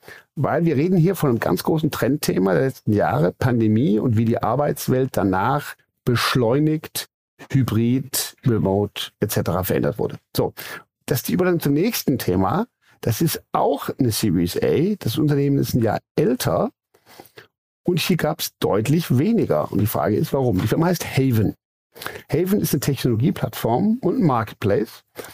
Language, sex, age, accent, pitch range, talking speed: German, male, 50-69, German, 110-160 Hz, 155 wpm